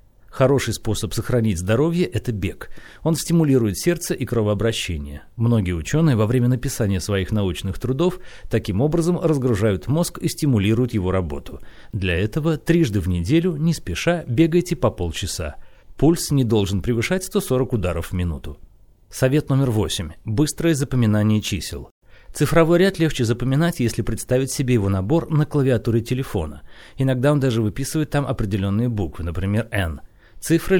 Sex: male